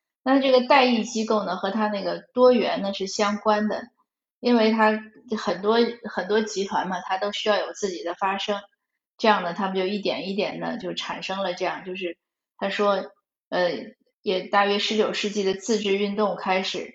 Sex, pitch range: female, 200-245 Hz